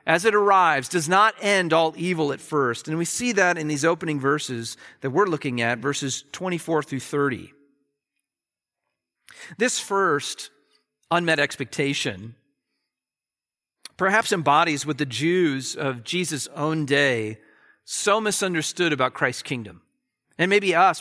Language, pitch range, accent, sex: English, 140-190 Hz, American, male